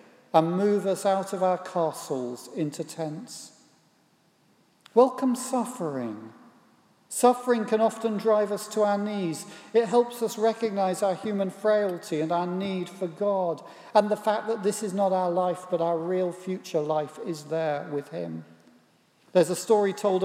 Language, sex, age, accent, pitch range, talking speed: English, male, 50-69, British, 160-210 Hz, 155 wpm